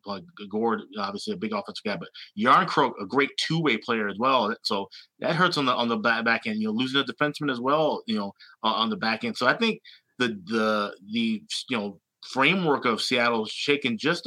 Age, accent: 30-49, American